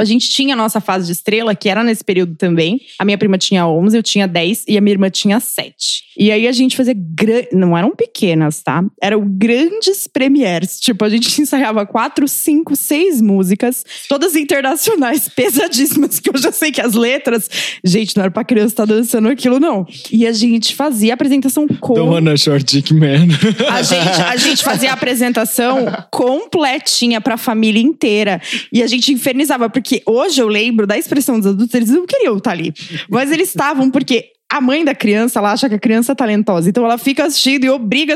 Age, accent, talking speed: 20-39, Brazilian, 200 wpm